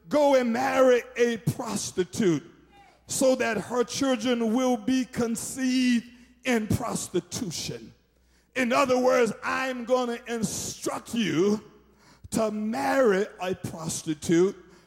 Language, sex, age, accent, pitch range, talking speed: English, male, 50-69, American, 210-265 Hz, 105 wpm